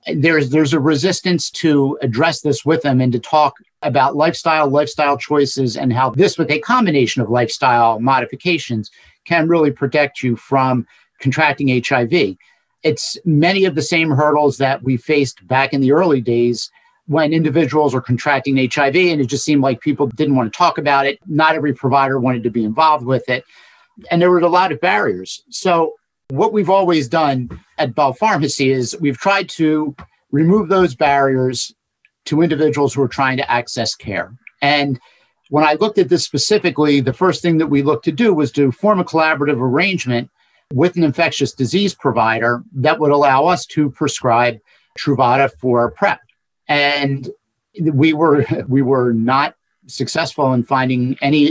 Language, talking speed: English, 170 wpm